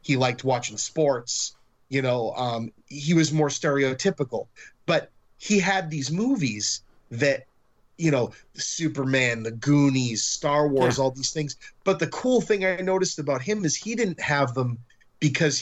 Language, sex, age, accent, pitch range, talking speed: English, male, 30-49, American, 125-155 Hz, 160 wpm